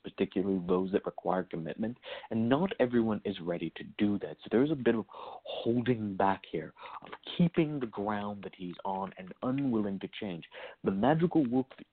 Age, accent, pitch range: 50-69, American, 95-125 Hz